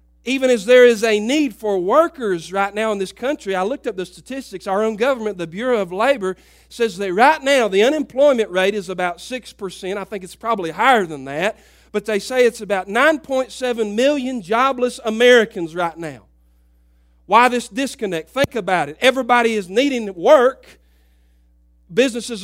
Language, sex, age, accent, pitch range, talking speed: English, male, 40-59, American, 195-250 Hz, 170 wpm